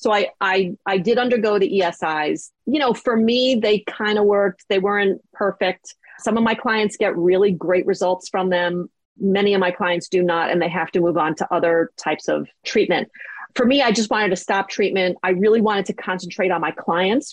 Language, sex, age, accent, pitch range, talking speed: English, female, 30-49, American, 175-215 Hz, 215 wpm